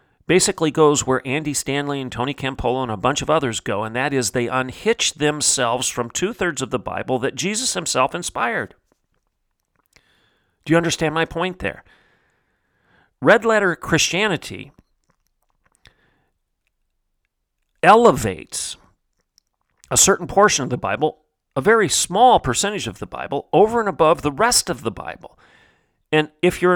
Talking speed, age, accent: 140 wpm, 40-59, American